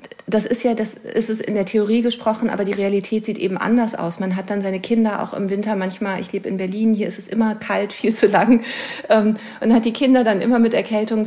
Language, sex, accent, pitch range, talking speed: German, female, German, 200-230 Hz, 250 wpm